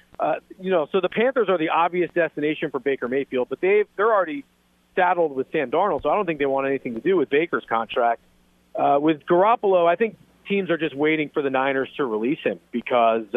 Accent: American